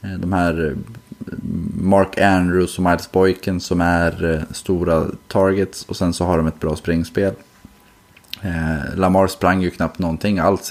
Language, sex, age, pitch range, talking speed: Swedish, male, 20-39, 85-100 Hz, 140 wpm